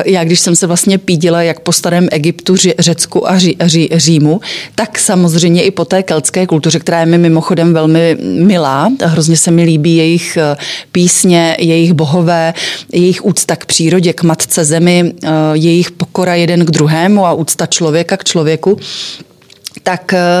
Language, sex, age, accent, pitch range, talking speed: Czech, female, 30-49, native, 165-185 Hz, 160 wpm